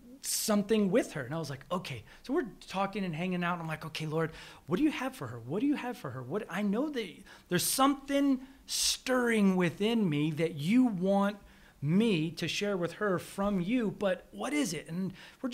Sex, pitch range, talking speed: male, 160-205 Hz, 210 wpm